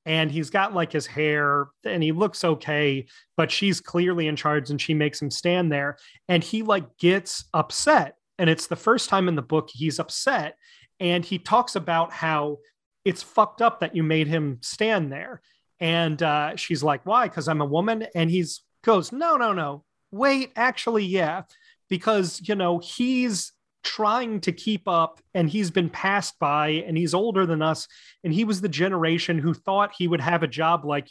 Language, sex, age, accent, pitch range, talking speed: English, male, 30-49, American, 155-200 Hz, 190 wpm